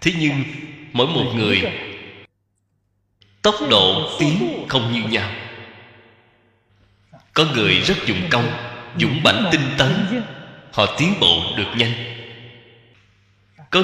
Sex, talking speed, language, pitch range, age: male, 115 wpm, Vietnamese, 100-155 Hz, 20-39